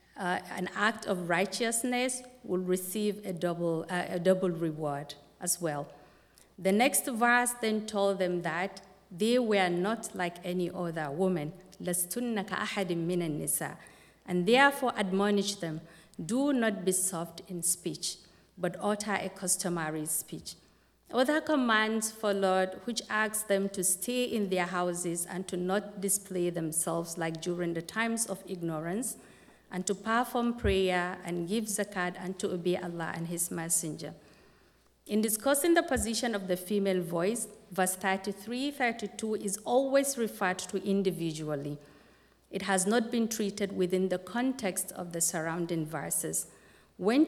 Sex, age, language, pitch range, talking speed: female, 50-69, English, 175-215 Hz, 140 wpm